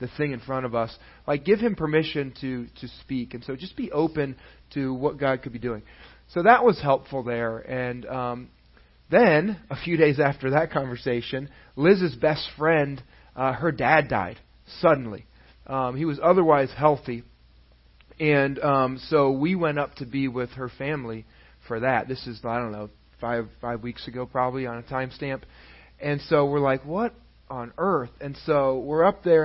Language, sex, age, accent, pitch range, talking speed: English, male, 30-49, American, 120-150 Hz, 180 wpm